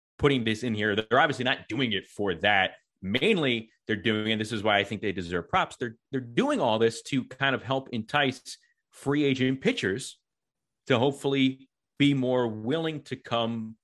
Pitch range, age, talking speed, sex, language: 100-130 Hz, 30-49, 185 wpm, male, English